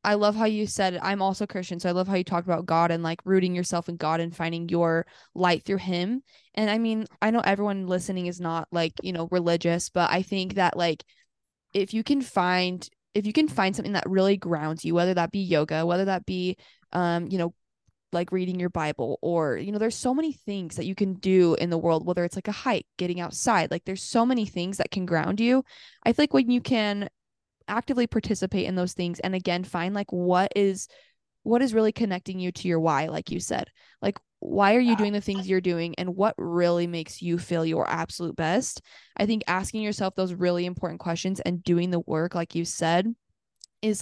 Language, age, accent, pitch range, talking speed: English, 10-29, American, 175-210 Hz, 225 wpm